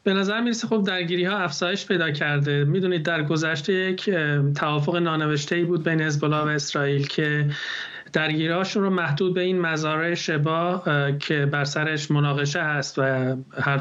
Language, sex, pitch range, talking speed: English, male, 145-170 Hz, 160 wpm